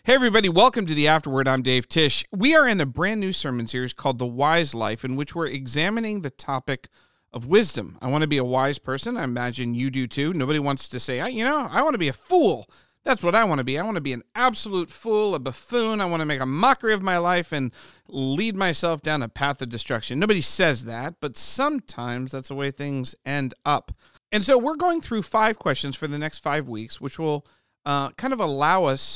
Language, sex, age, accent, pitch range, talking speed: English, male, 40-59, American, 130-195 Hz, 240 wpm